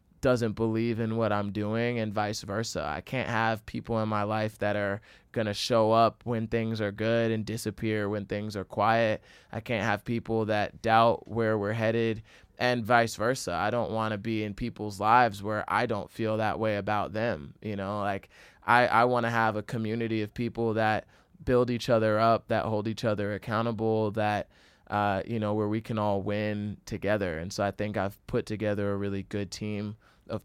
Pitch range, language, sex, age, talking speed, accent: 105-115 Hz, English, male, 20-39, 205 wpm, American